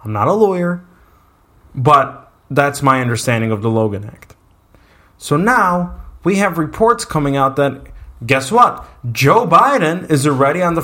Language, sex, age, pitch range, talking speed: English, male, 20-39, 115-145 Hz, 155 wpm